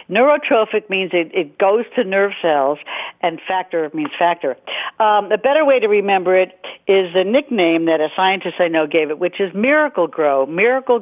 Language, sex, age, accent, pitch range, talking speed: English, female, 60-79, American, 175-225 Hz, 185 wpm